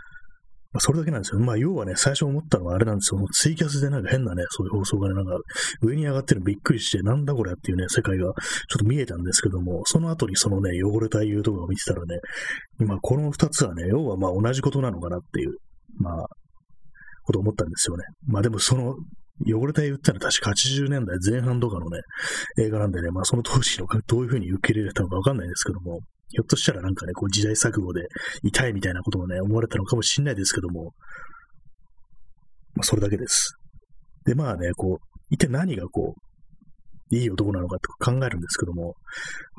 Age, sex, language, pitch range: 30-49, male, Japanese, 95-140 Hz